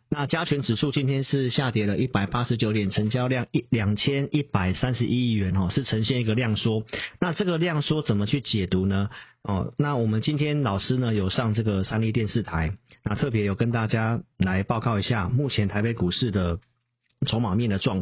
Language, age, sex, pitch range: Chinese, 40-59, male, 105-135 Hz